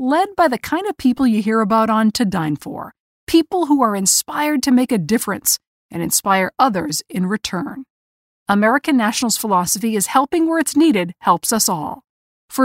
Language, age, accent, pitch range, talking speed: English, 50-69, American, 205-280 Hz, 180 wpm